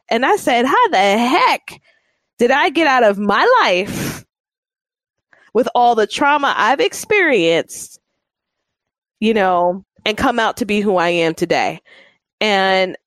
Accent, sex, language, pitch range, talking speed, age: American, female, English, 180-220 Hz, 140 wpm, 20-39